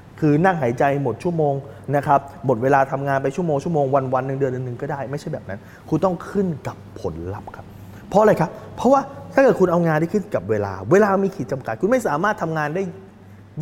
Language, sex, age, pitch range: Thai, male, 20-39, 105-145 Hz